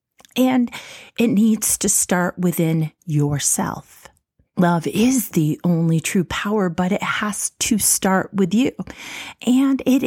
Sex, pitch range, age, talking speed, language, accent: female, 185-240 Hz, 30-49, 130 wpm, English, American